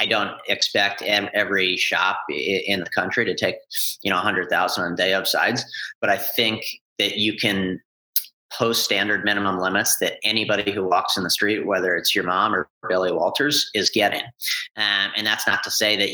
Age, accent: 30-49, American